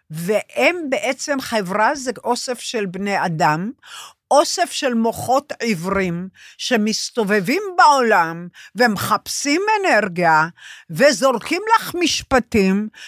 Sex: female